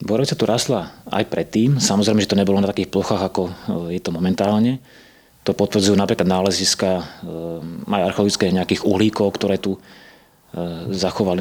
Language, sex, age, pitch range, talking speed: Slovak, male, 30-49, 90-105 Hz, 135 wpm